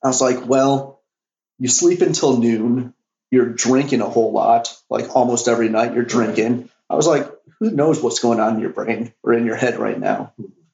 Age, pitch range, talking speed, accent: 30-49, 120-150 Hz, 200 wpm, American